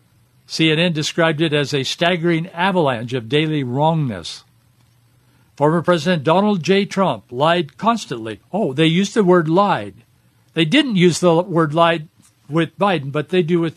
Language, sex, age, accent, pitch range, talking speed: English, male, 60-79, American, 130-175 Hz, 155 wpm